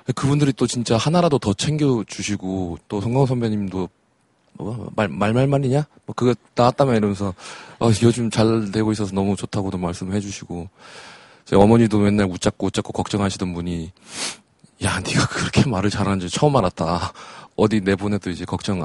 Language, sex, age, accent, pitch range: Korean, male, 20-39, native, 100-130 Hz